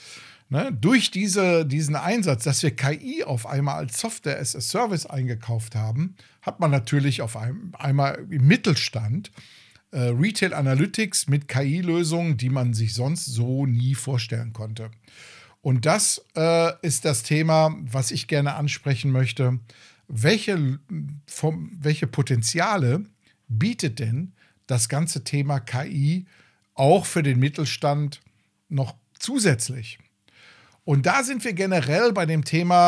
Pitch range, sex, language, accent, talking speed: 120-155 Hz, male, German, German, 120 wpm